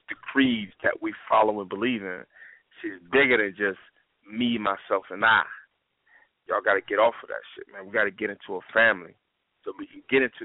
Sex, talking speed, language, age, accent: male, 210 wpm, English, 30-49, American